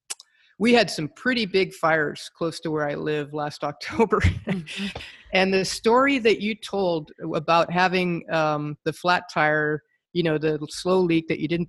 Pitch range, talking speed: 150-170 Hz, 170 wpm